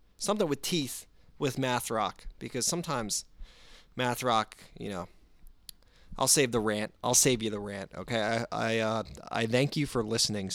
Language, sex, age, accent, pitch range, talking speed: English, male, 20-39, American, 115-150 Hz, 170 wpm